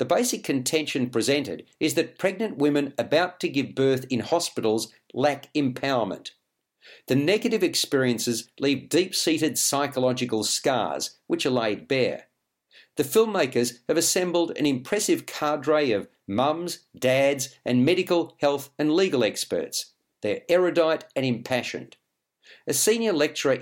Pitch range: 130-175 Hz